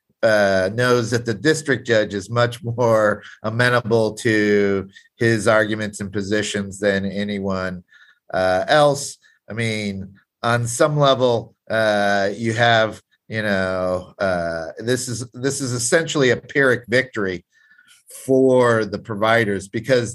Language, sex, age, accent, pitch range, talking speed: English, male, 50-69, American, 105-125 Hz, 120 wpm